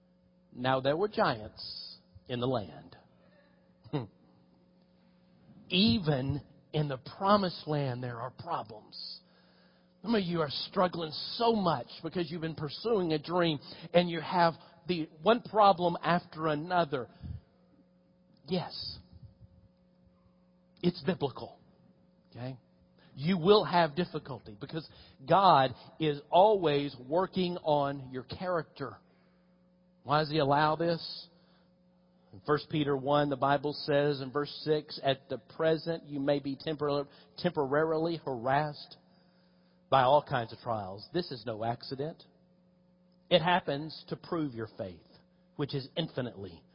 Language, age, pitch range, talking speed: English, 50-69, 135-180 Hz, 120 wpm